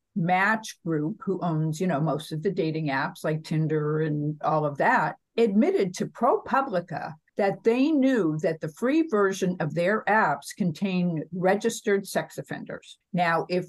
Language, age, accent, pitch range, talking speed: English, 50-69, American, 160-210 Hz, 160 wpm